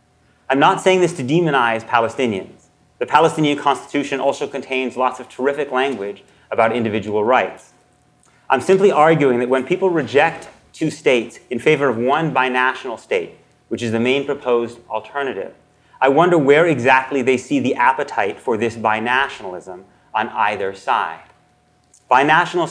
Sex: male